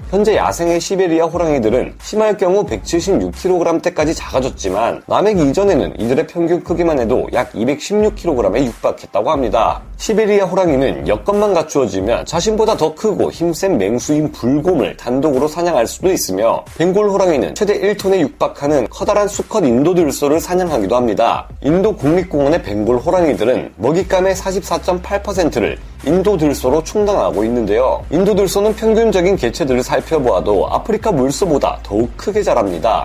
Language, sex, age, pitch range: Korean, male, 30-49, 165-210 Hz